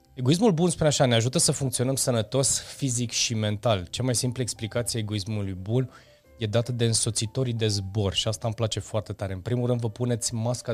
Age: 20-39